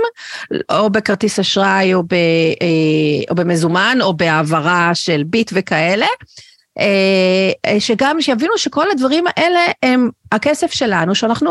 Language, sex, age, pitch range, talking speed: Hebrew, female, 40-59, 190-265 Hz, 110 wpm